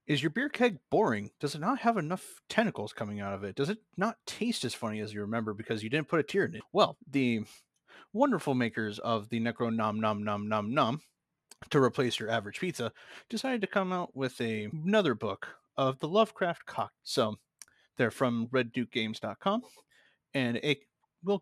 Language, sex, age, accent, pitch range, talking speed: English, male, 30-49, American, 110-170 Hz, 175 wpm